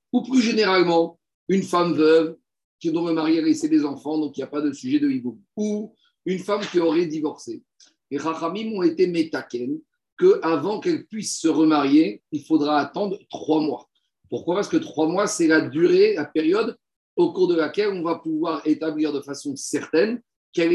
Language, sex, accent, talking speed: French, male, French, 190 wpm